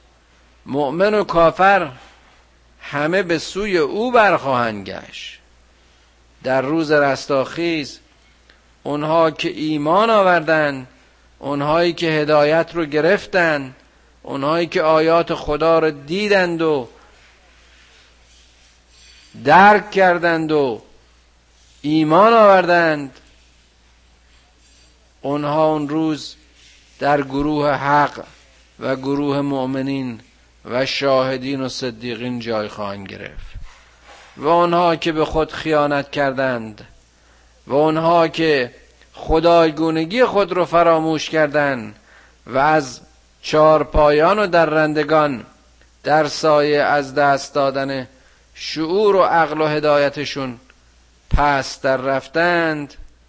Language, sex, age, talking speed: Persian, male, 50-69, 95 wpm